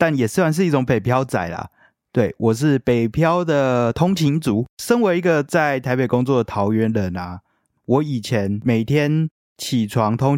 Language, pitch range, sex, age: Chinese, 105-130 Hz, male, 20-39